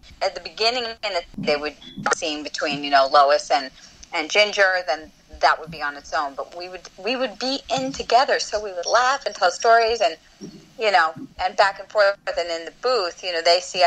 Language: English